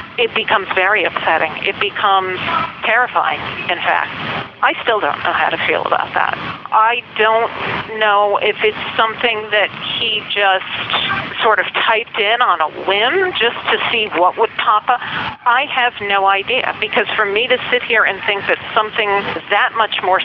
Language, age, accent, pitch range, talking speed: English, 50-69, American, 185-220 Hz, 170 wpm